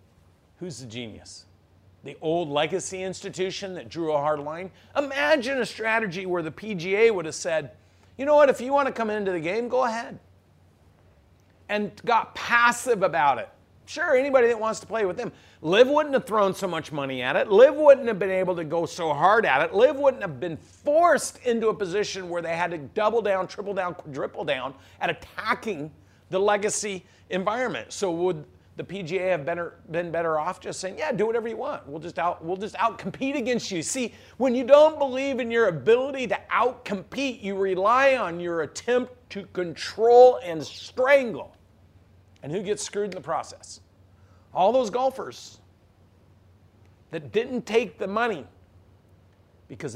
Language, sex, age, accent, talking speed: English, male, 50-69, American, 180 wpm